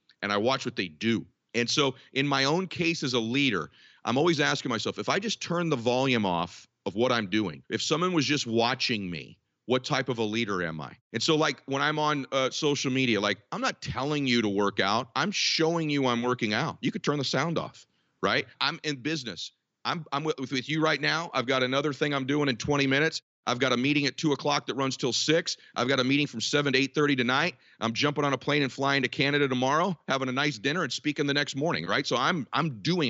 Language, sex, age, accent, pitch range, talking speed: English, male, 40-59, American, 125-150 Hz, 245 wpm